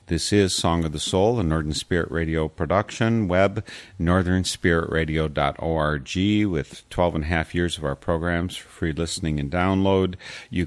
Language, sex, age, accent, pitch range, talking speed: English, male, 50-69, American, 75-90 Hz, 155 wpm